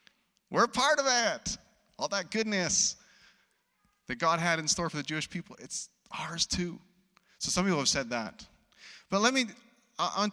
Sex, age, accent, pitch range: male, 30-49, American, 155-215 Hz